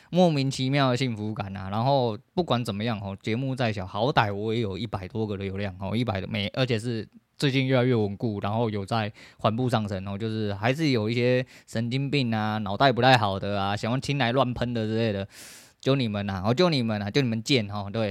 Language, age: Chinese, 20-39